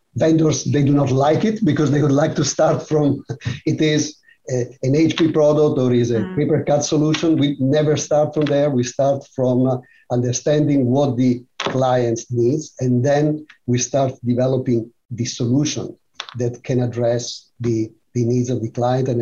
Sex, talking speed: male, 175 wpm